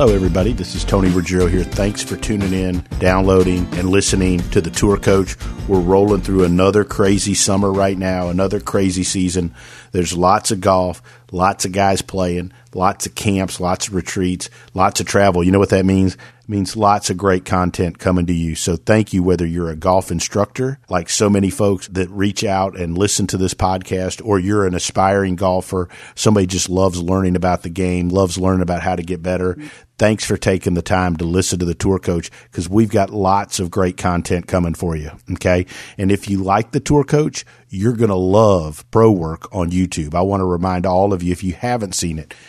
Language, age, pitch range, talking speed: English, 50-69, 90-105 Hz, 210 wpm